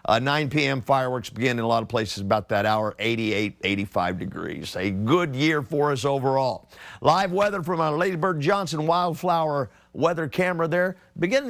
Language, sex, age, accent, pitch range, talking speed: English, male, 50-69, American, 110-155 Hz, 170 wpm